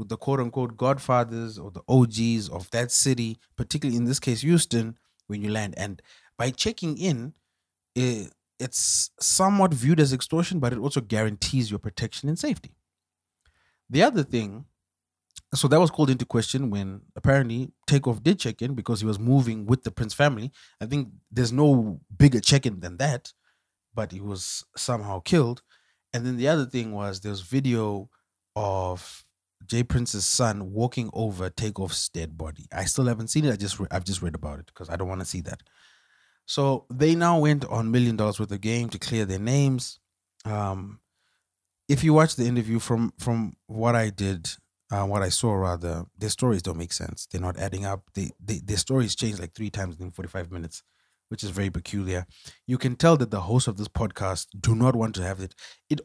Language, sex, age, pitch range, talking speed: English, male, 20-39, 95-130 Hz, 190 wpm